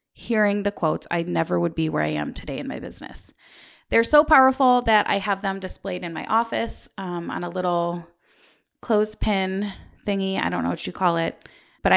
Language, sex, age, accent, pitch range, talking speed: English, female, 30-49, American, 160-220 Hz, 200 wpm